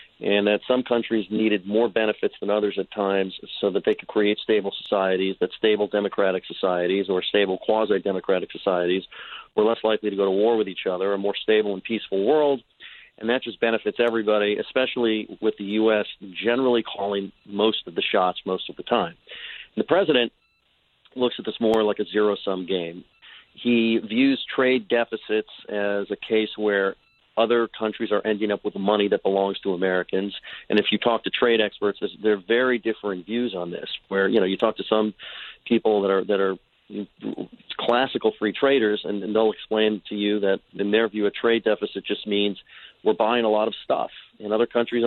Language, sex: English, male